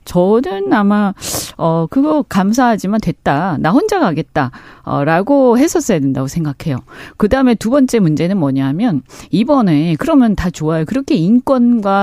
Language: Korean